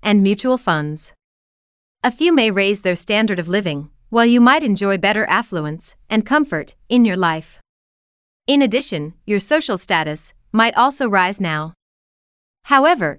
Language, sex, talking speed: English, female, 145 wpm